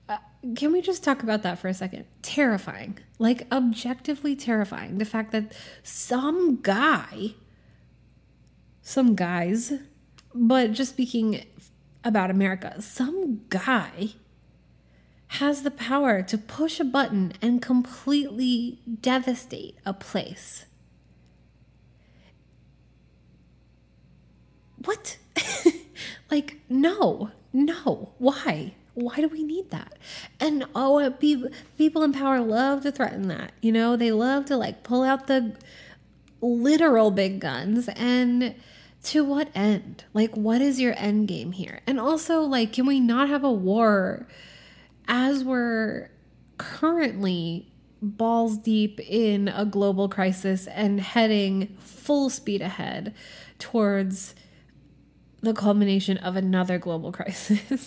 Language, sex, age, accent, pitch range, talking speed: English, female, 20-39, American, 200-270 Hz, 115 wpm